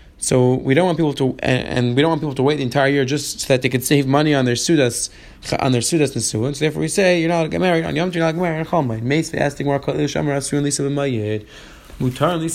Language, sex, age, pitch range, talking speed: English, male, 20-39, 135-165 Hz, 205 wpm